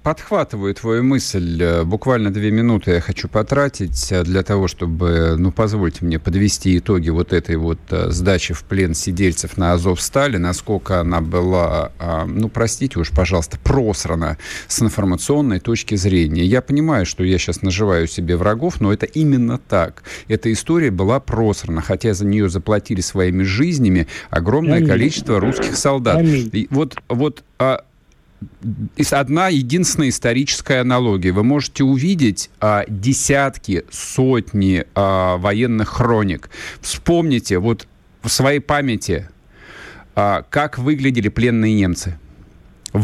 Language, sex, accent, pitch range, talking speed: Russian, male, native, 95-135 Hz, 125 wpm